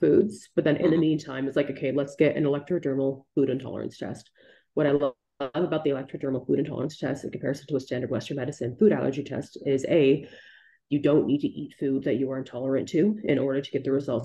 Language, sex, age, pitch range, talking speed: English, female, 30-49, 130-150 Hz, 225 wpm